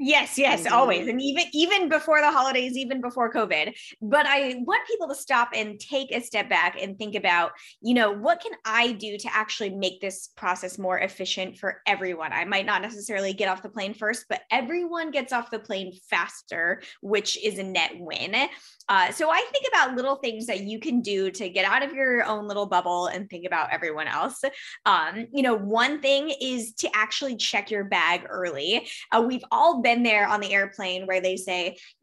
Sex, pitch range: female, 200-270 Hz